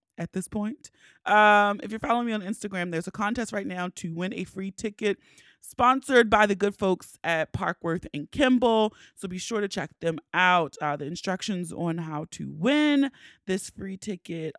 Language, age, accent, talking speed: English, 30-49, American, 190 wpm